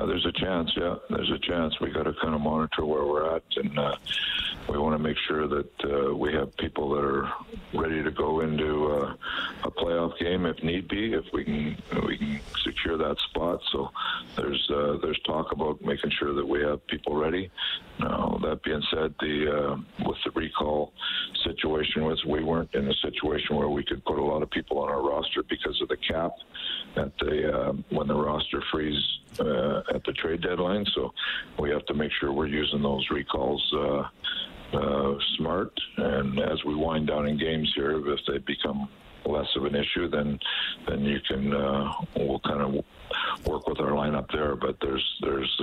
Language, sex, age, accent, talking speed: English, male, 50-69, American, 200 wpm